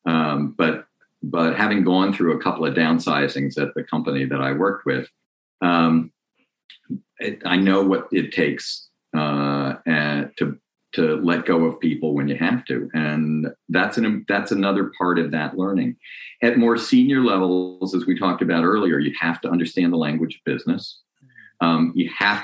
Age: 50-69